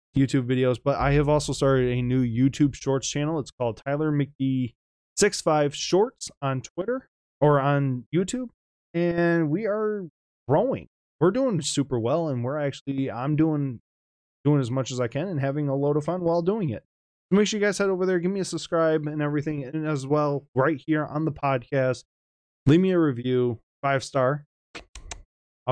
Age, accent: 20-39, American